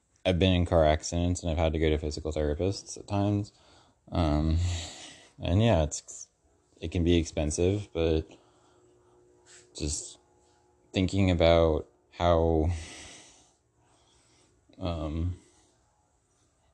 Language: English